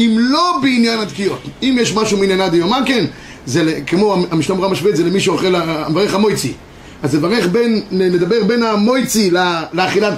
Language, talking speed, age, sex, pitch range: Hebrew, 165 wpm, 30-49, male, 195-250 Hz